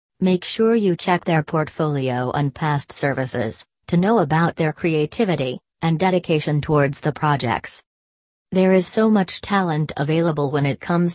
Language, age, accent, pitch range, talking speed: English, 40-59, American, 145-180 Hz, 150 wpm